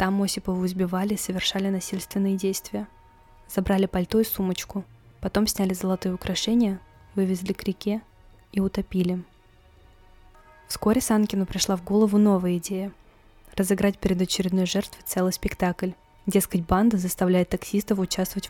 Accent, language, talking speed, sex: native, Russian, 120 wpm, female